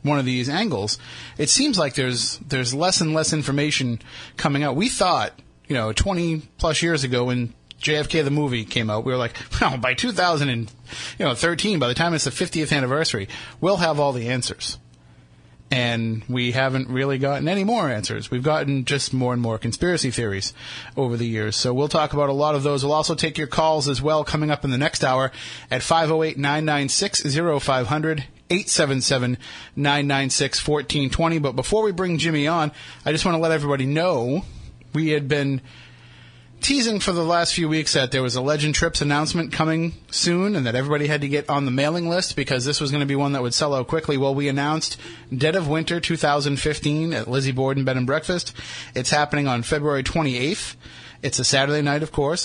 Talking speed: 195 wpm